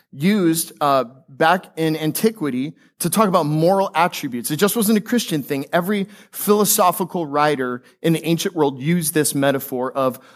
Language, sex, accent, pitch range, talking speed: English, male, American, 135-180 Hz, 155 wpm